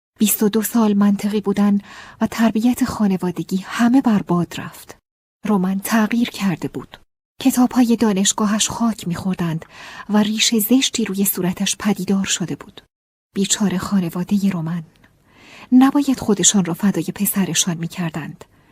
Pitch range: 185-230 Hz